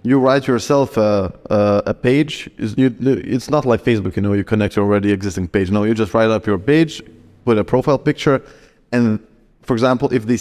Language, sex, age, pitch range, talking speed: English, male, 20-39, 110-130 Hz, 195 wpm